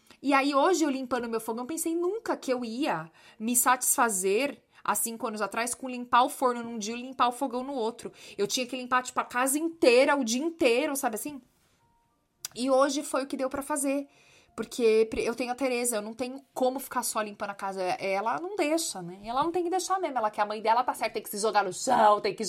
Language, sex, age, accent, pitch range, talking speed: Portuguese, female, 20-39, Brazilian, 210-280 Hz, 240 wpm